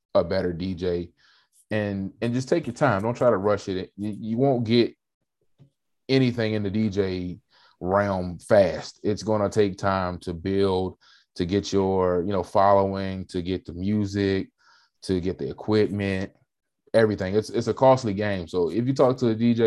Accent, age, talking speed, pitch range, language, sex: American, 20-39, 175 wpm, 95-110 Hz, English, male